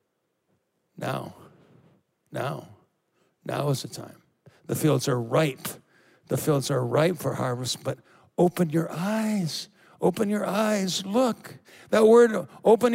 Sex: male